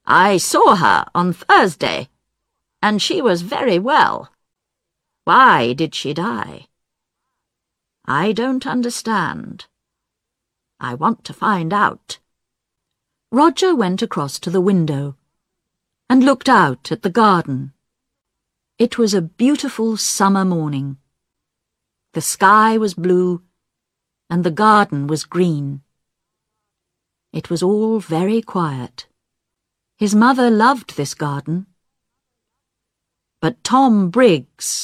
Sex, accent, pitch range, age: female, British, 150-230 Hz, 50-69